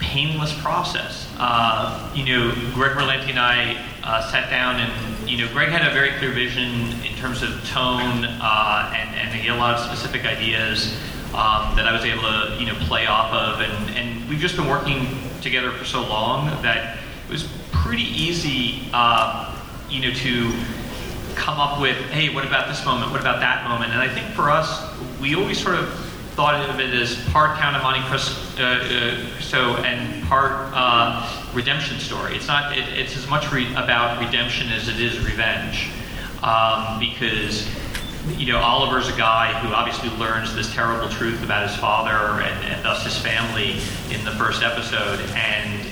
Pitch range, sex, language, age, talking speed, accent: 110-130 Hz, male, English, 30-49, 185 wpm, American